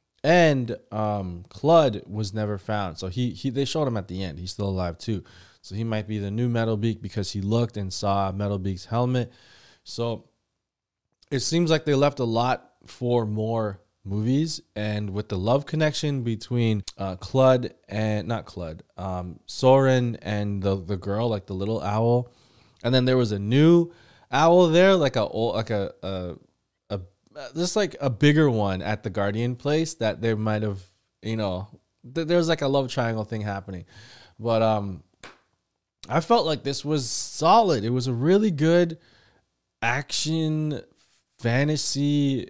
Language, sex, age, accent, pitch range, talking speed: English, male, 20-39, American, 100-130 Hz, 170 wpm